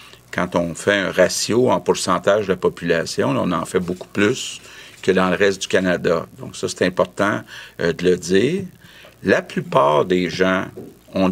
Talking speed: 180 wpm